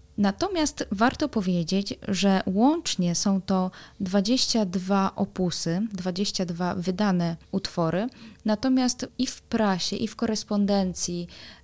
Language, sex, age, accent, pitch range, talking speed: Polish, female, 20-39, native, 185-225 Hz, 100 wpm